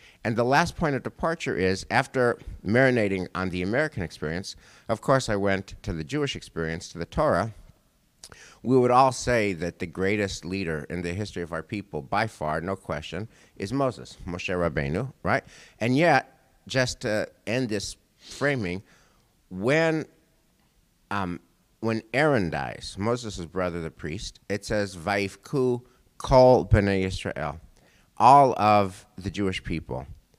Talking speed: 145 wpm